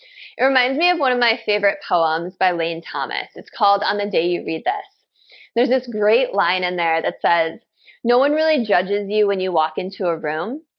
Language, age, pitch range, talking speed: English, 20-39, 205-295 Hz, 215 wpm